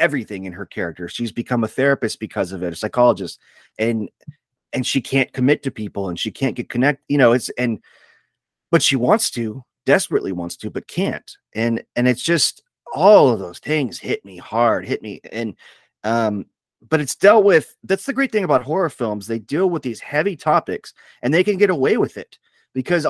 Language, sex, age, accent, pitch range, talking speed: English, male, 30-49, American, 120-150 Hz, 205 wpm